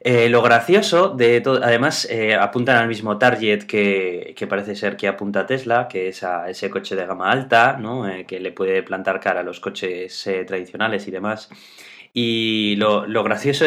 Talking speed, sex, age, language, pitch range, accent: 195 wpm, male, 20-39, Spanish, 100-130 Hz, Spanish